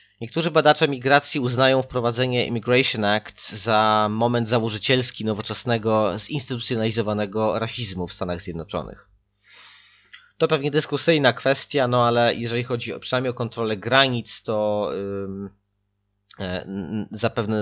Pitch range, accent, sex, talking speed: 105-125 Hz, native, male, 100 wpm